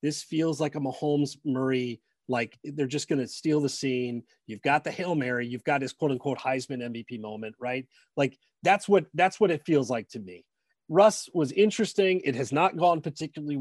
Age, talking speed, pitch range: 30-49, 195 wpm, 130-155 Hz